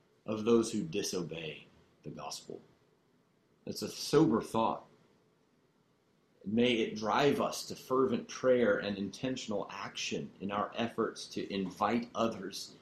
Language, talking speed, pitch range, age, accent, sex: English, 120 wpm, 100-130 Hz, 40-59, American, male